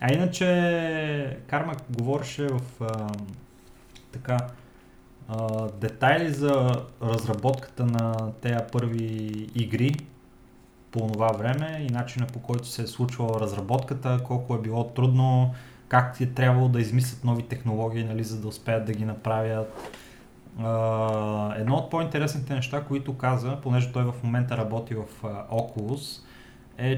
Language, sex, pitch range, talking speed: Bulgarian, male, 115-130 Hz, 135 wpm